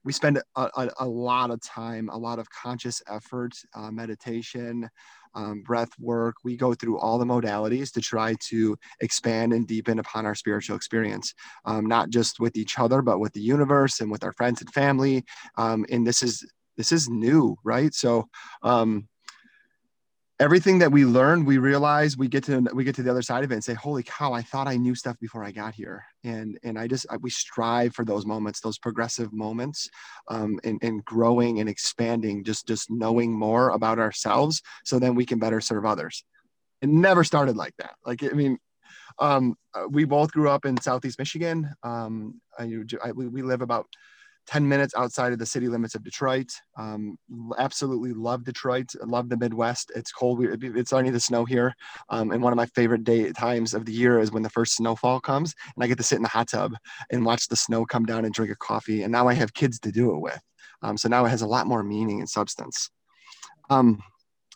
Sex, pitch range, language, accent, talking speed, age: male, 115-130 Hz, English, American, 205 wpm, 30-49